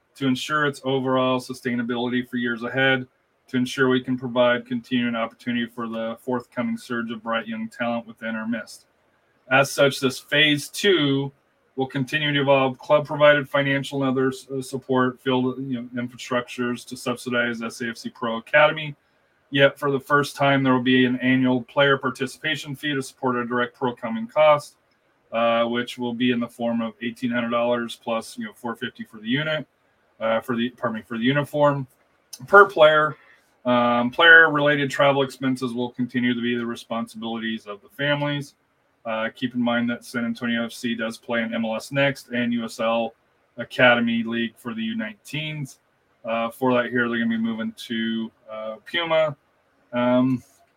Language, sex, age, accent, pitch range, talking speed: English, male, 30-49, American, 115-135 Hz, 170 wpm